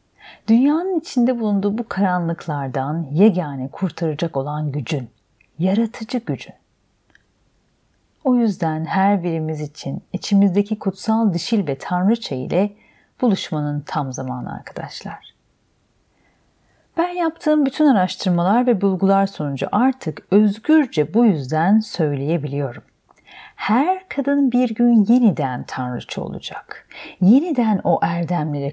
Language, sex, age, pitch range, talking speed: Turkish, female, 40-59, 155-220 Hz, 100 wpm